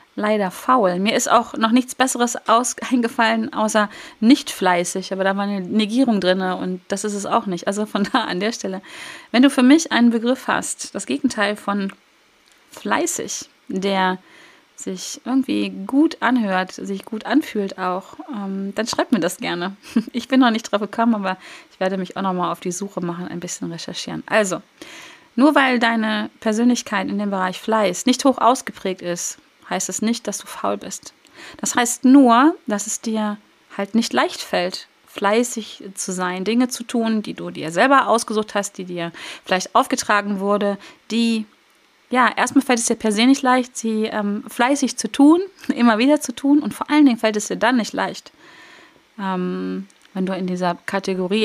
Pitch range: 195-255 Hz